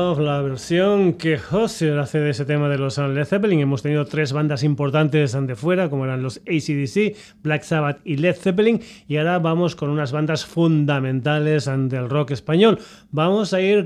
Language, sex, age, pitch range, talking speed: Spanish, male, 30-49, 145-185 Hz, 175 wpm